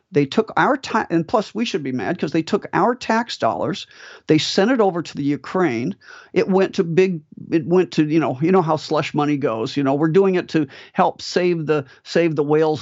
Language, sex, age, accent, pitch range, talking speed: English, male, 50-69, American, 145-175 Hz, 240 wpm